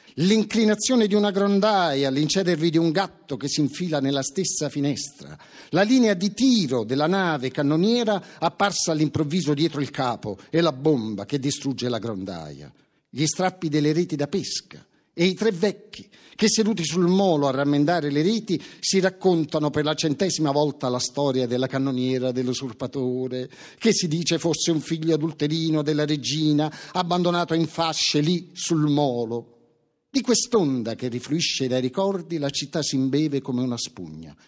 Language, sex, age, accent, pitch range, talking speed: Italian, male, 50-69, native, 130-185 Hz, 155 wpm